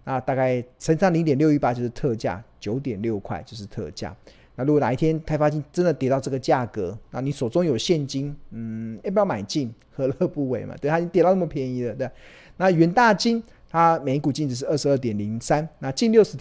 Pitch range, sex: 120-160 Hz, male